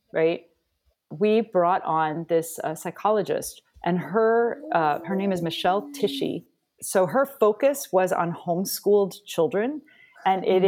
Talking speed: 135 wpm